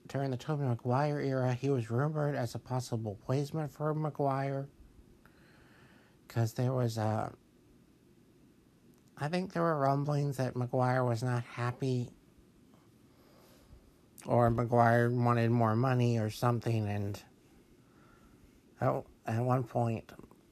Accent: American